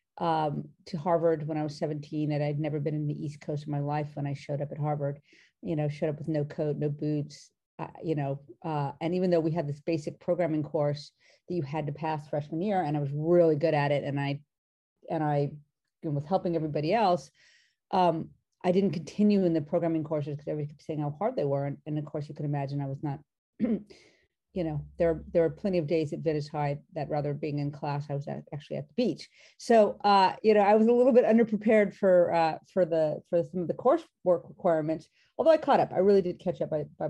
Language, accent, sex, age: English, American, female, 40-59